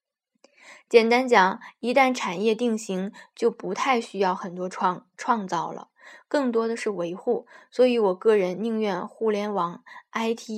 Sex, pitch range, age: female, 195-250 Hz, 20-39